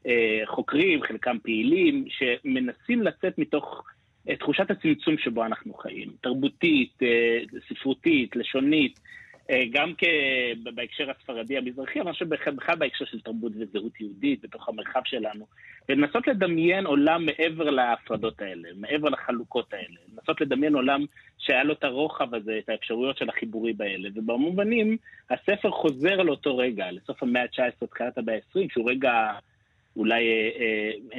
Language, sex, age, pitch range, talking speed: Hebrew, male, 30-49, 115-180 Hz, 140 wpm